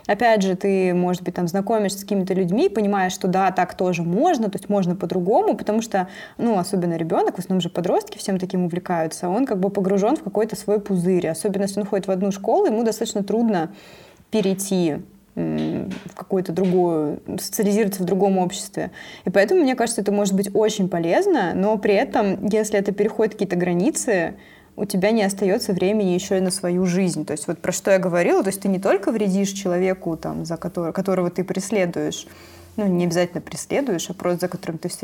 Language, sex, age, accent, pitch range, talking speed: Russian, female, 20-39, native, 180-215 Hz, 195 wpm